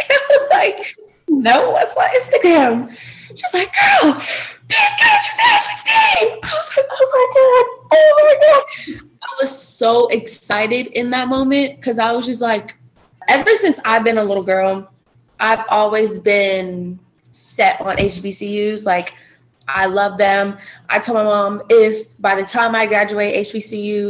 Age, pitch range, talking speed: 20-39, 195-255 Hz, 155 wpm